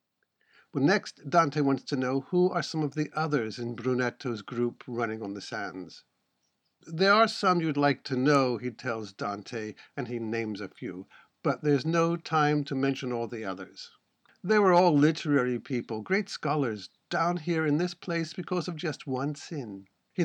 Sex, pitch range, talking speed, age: male, 115-150 Hz, 180 wpm, 50-69